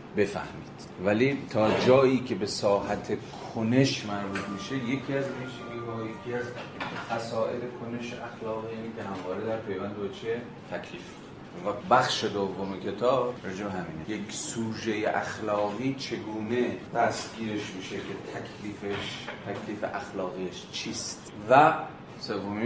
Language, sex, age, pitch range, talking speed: Persian, male, 30-49, 100-120 Hz, 110 wpm